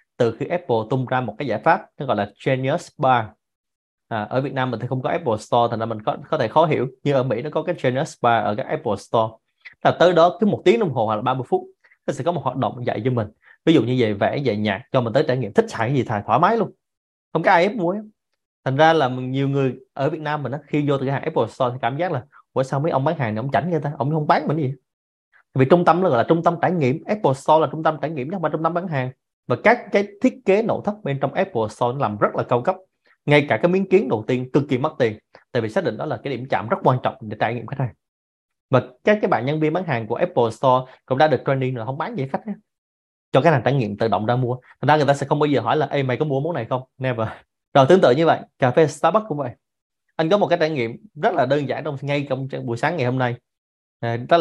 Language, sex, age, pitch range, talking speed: Vietnamese, male, 20-39, 125-160 Hz, 300 wpm